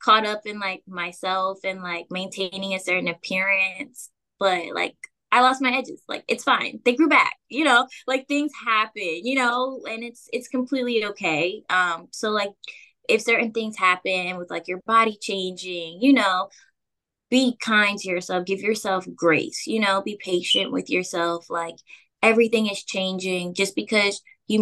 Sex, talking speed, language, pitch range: female, 170 wpm, English, 175-210 Hz